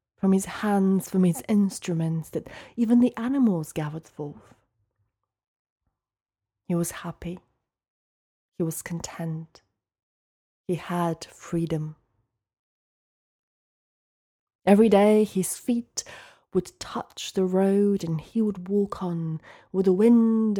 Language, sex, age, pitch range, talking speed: English, female, 30-49, 155-200 Hz, 110 wpm